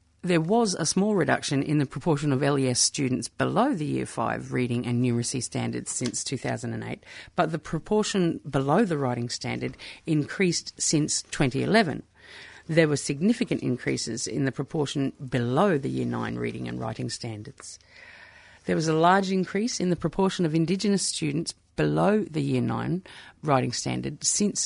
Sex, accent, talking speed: female, Australian, 155 wpm